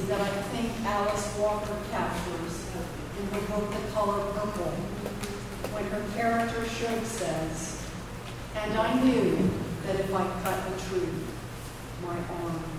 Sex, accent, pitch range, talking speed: female, American, 165-210 Hz, 130 wpm